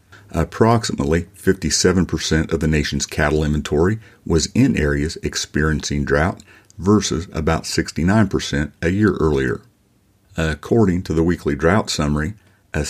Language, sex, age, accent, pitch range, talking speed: English, male, 50-69, American, 75-95 Hz, 115 wpm